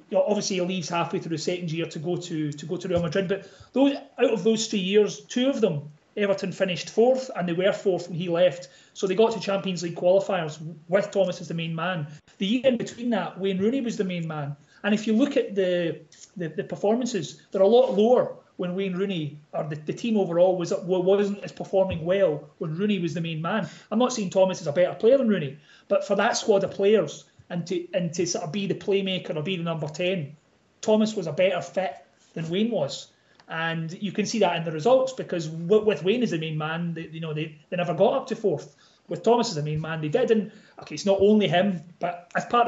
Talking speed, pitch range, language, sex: 245 wpm, 170-205 Hz, English, male